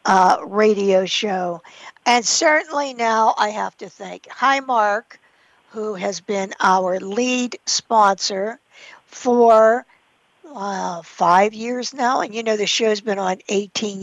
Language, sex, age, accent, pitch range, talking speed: English, female, 60-79, American, 195-240 Hz, 135 wpm